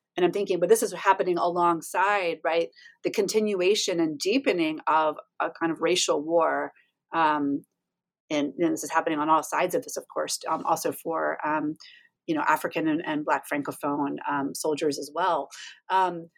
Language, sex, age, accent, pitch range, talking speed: English, female, 30-49, American, 165-215 Hz, 175 wpm